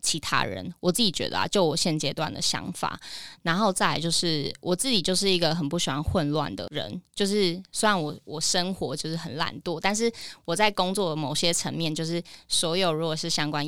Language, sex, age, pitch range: Chinese, female, 20-39, 155-190 Hz